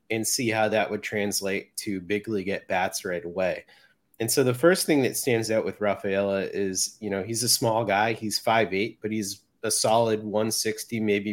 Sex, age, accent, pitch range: male, 30-49, American, 100-120 Hz